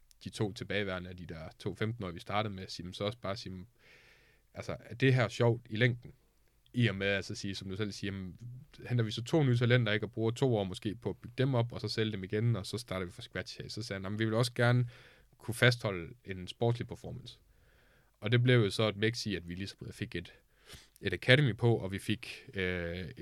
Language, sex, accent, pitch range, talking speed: Danish, male, native, 95-120 Hz, 245 wpm